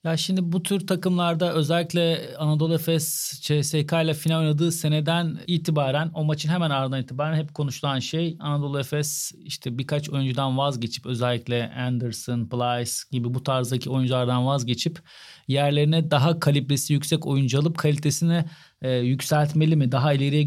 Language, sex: Turkish, male